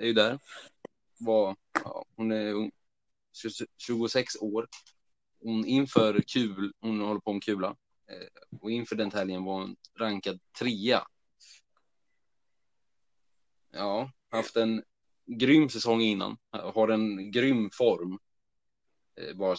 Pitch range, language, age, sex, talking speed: 100-115 Hz, Swedish, 20-39, male, 105 wpm